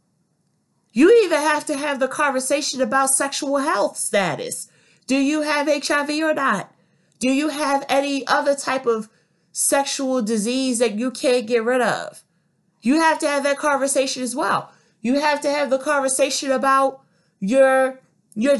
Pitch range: 220-285 Hz